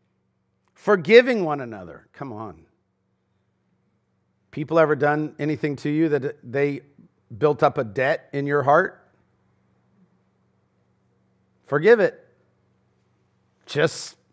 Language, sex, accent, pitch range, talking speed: English, male, American, 120-195 Hz, 95 wpm